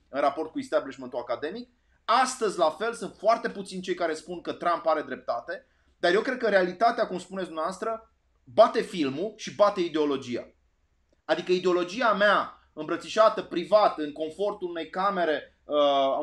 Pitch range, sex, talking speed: 170-245 Hz, male, 150 wpm